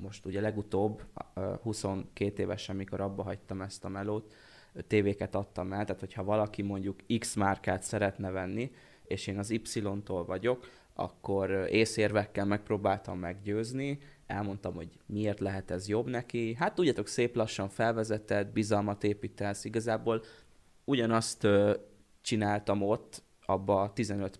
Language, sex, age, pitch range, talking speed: Hungarian, male, 20-39, 95-110 Hz, 125 wpm